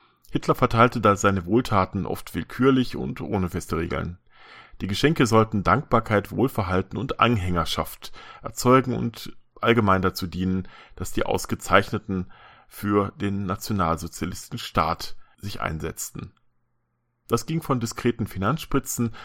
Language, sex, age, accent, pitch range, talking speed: German, male, 40-59, German, 95-120 Hz, 115 wpm